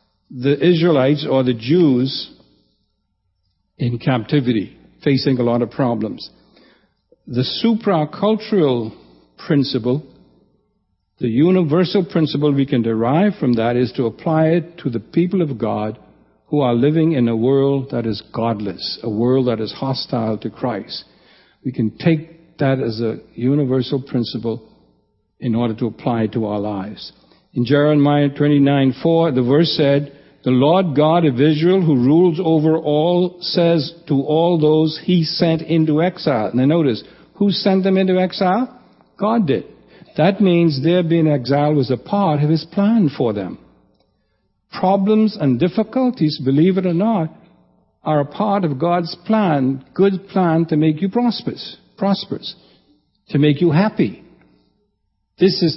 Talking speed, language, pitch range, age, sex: 145 wpm, English, 125-175 Hz, 60-79, male